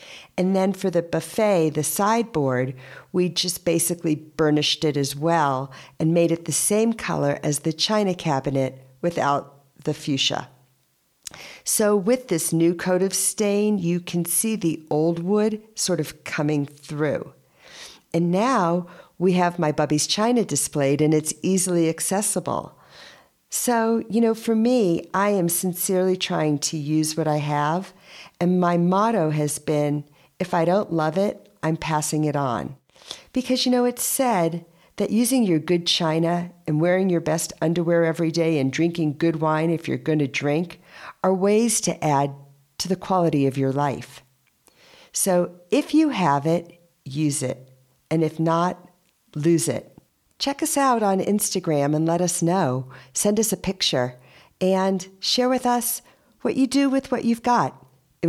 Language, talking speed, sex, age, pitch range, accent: English, 160 wpm, female, 50-69, 150-195 Hz, American